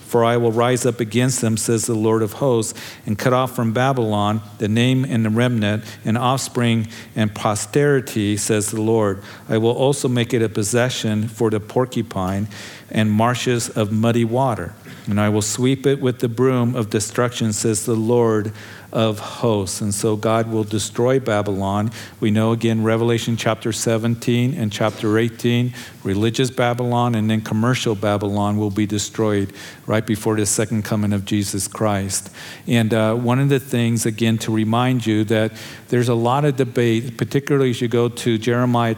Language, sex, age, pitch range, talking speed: English, male, 50-69, 110-125 Hz, 175 wpm